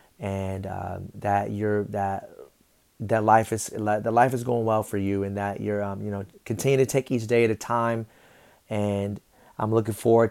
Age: 30-49